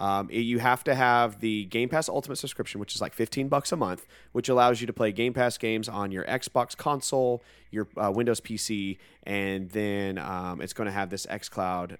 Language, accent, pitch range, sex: English, American, 100-135 Hz, male